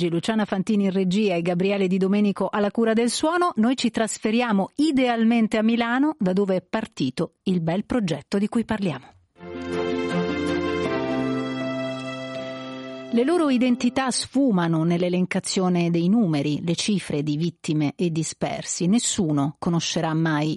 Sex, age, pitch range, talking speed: female, 40-59, 165-220 Hz, 130 wpm